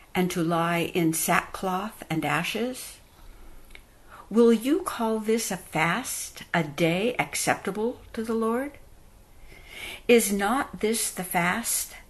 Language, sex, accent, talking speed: English, female, American, 120 wpm